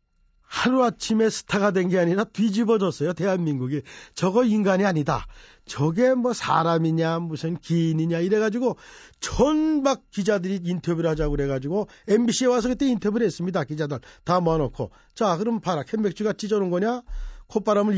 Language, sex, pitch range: Korean, male, 140-205 Hz